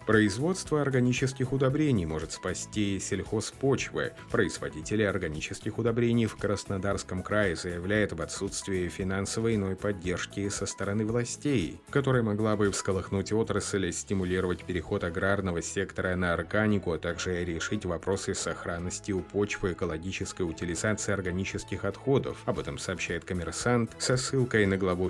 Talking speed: 120 wpm